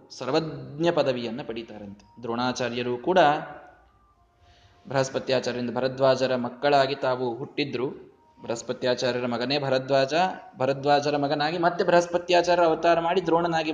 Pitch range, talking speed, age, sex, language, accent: 130-210 Hz, 85 wpm, 20-39, male, Kannada, native